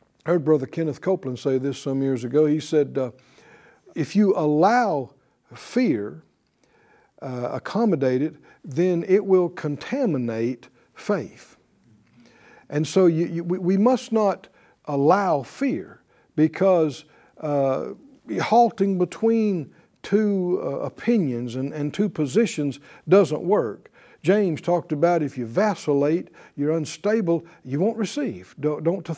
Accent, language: American, English